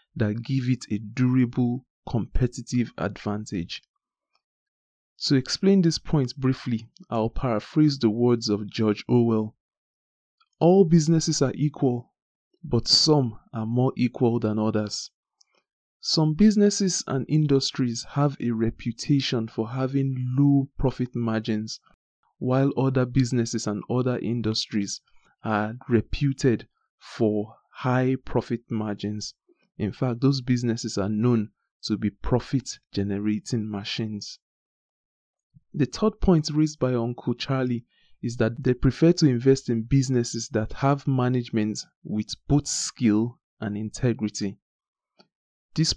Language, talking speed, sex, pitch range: English, 115 wpm, male, 110-135 Hz